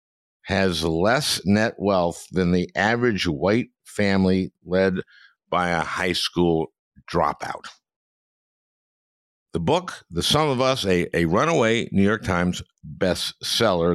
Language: English